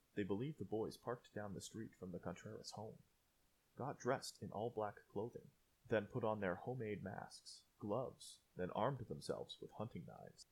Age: 20-39